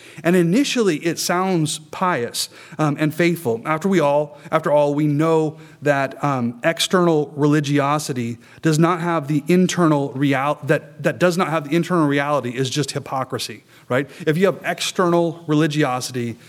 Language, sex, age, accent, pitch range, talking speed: English, male, 30-49, American, 135-160 Hz, 155 wpm